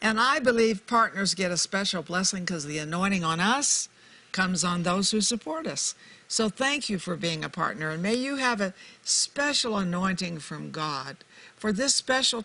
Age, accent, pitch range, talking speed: 60-79, American, 185-240 Hz, 185 wpm